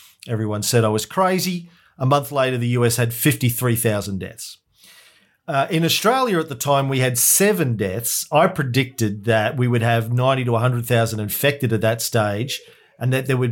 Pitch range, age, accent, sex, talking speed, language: 110-135 Hz, 40-59, Australian, male, 180 wpm, English